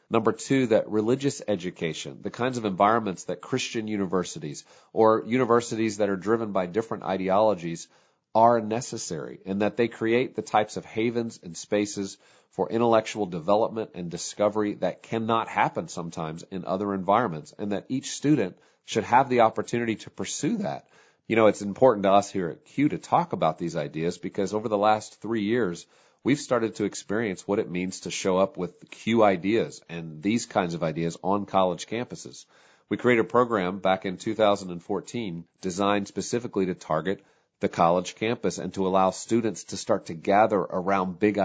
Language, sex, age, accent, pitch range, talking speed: English, male, 40-59, American, 95-115 Hz, 175 wpm